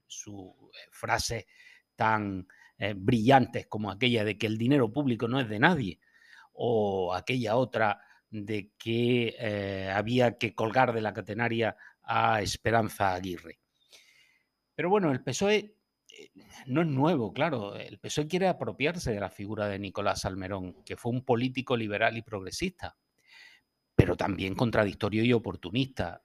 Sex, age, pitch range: male, 50-69, 105-140 Hz